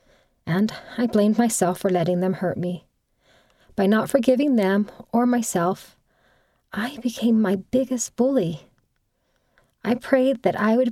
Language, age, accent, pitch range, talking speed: English, 40-59, American, 185-240 Hz, 135 wpm